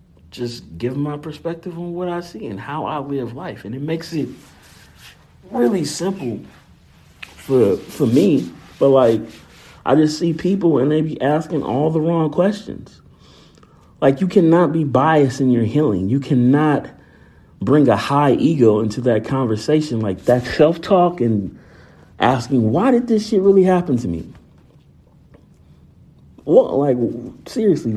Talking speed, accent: 150 wpm, American